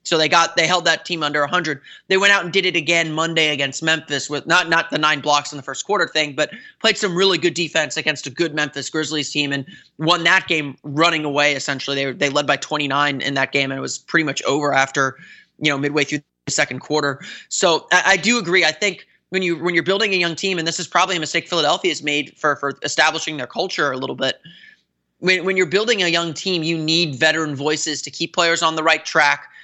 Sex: male